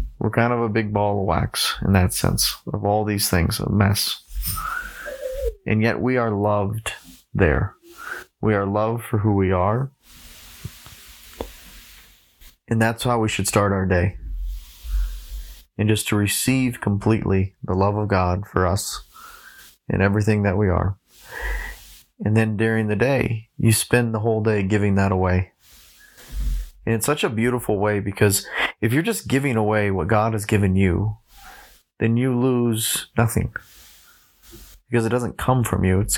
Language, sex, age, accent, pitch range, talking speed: English, male, 30-49, American, 95-115 Hz, 160 wpm